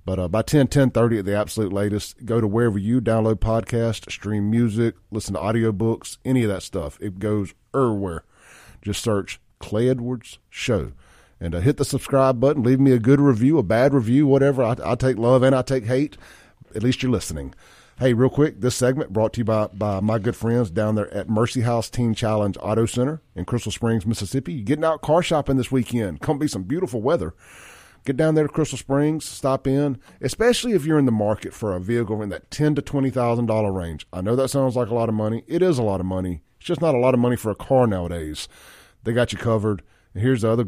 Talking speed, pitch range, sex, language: 230 wpm, 105-130 Hz, male, English